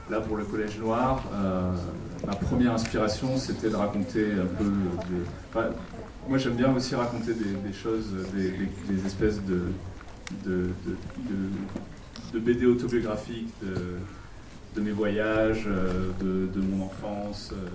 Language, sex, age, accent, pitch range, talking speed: French, male, 30-49, French, 95-110 Hz, 135 wpm